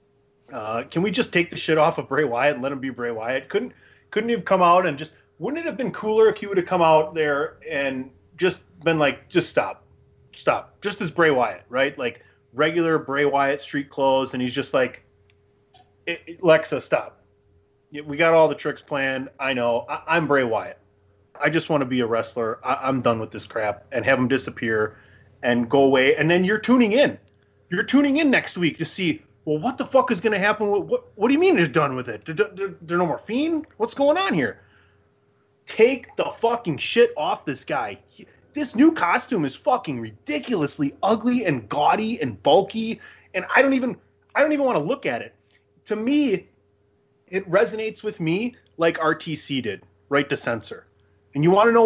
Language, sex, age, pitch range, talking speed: English, male, 30-49, 135-215 Hz, 210 wpm